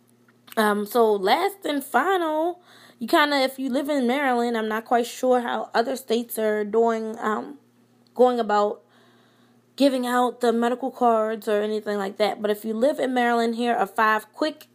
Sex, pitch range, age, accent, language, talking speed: female, 200-240 Hz, 20-39, American, English, 180 wpm